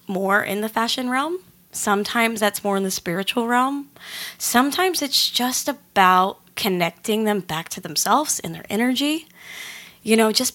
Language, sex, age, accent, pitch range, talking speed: English, female, 20-39, American, 185-235 Hz, 155 wpm